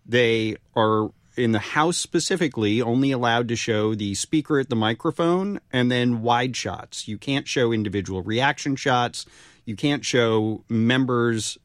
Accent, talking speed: American, 150 wpm